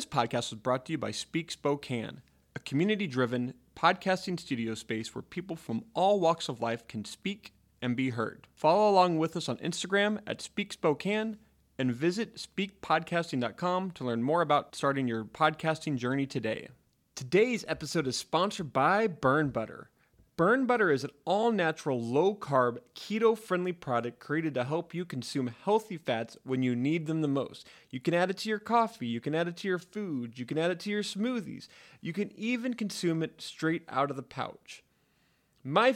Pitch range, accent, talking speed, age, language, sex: 130-195 Hz, American, 180 wpm, 30-49, English, male